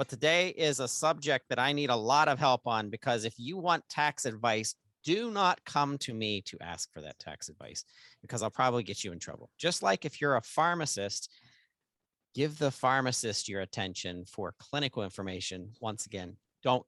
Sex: male